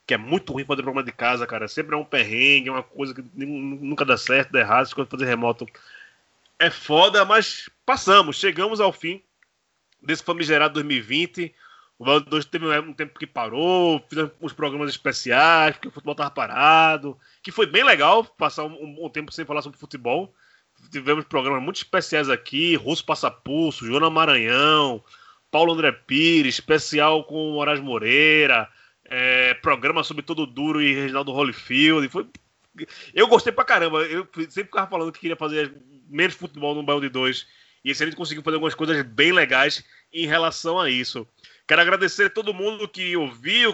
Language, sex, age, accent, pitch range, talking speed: Portuguese, male, 20-39, Brazilian, 140-165 Hz, 175 wpm